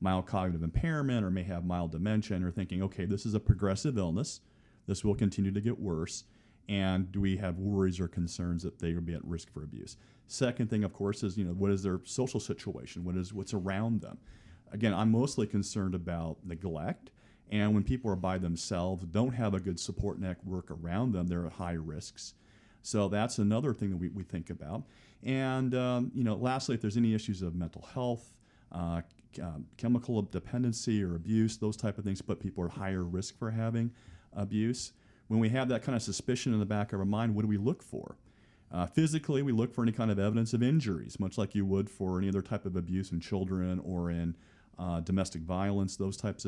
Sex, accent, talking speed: male, American, 215 wpm